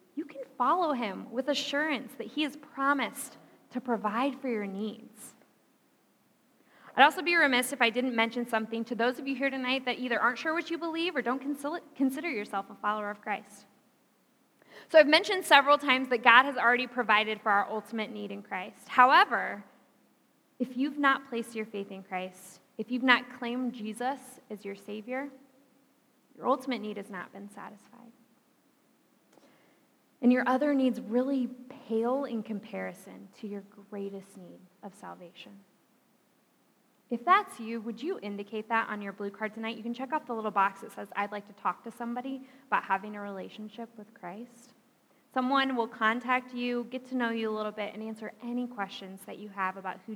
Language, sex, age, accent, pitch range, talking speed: English, female, 20-39, American, 210-265 Hz, 180 wpm